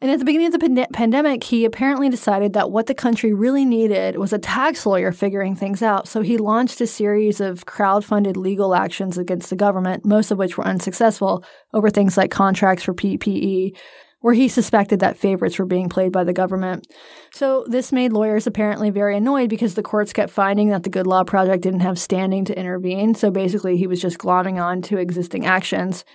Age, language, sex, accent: 20-39, English, female, American